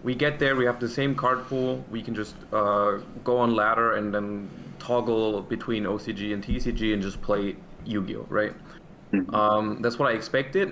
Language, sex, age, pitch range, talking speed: English, male, 20-39, 105-120 Hz, 185 wpm